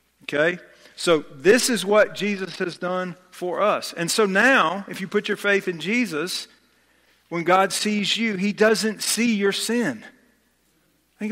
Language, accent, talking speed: English, American, 160 wpm